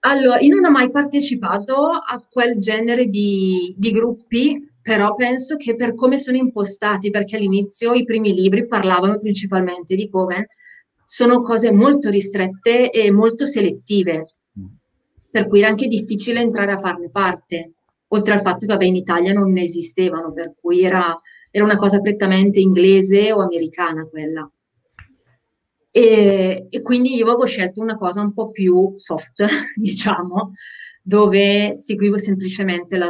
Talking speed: 145 wpm